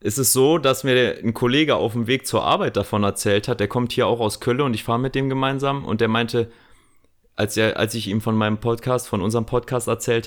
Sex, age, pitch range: male, 30-49, 105-125 Hz